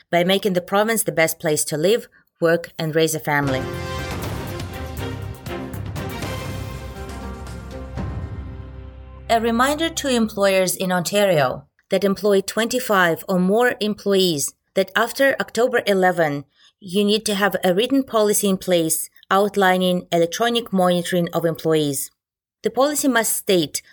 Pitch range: 165-205 Hz